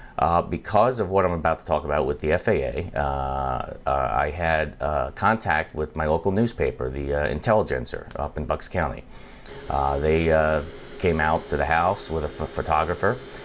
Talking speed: 180 wpm